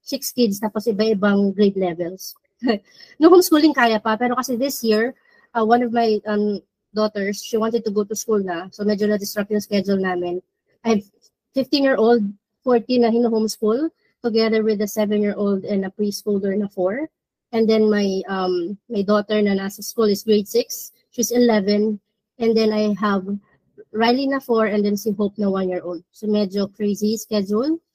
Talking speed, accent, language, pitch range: 185 wpm, native, Filipino, 205-255 Hz